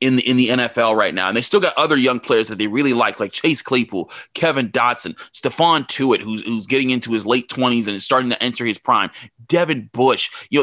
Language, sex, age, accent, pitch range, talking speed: English, male, 30-49, American, 110-135 Hz, 235 wpm